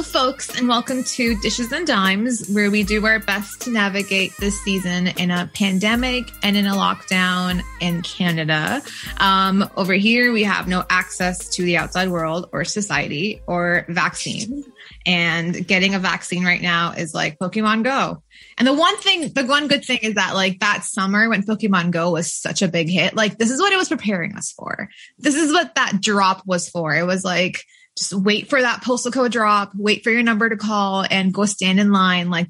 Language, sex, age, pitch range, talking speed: English, female, 20-39, 180-240 Hz, 200 wpm